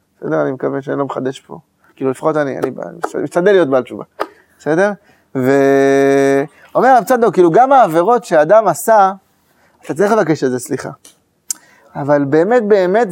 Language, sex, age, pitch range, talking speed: Hebrew, male, 30-49, 185-260 Hz, 155 wpm